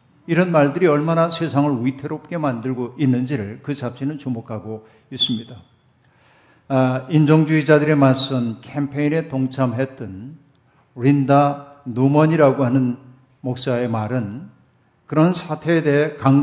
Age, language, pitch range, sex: 50-69, Korean, 125-150 Hz, male